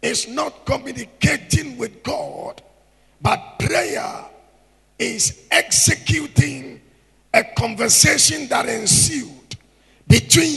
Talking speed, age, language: 80 wpm, 50-69, English